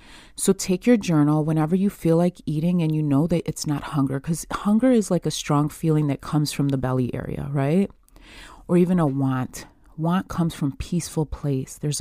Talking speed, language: 200 wpm, English